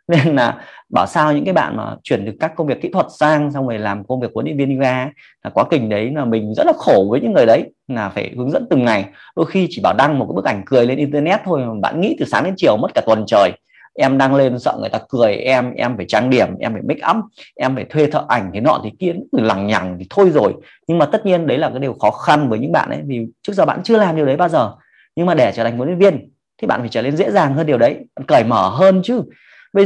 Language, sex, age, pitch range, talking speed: Vietnamese, male, 20-39, 115-165 Hz, 295 wpm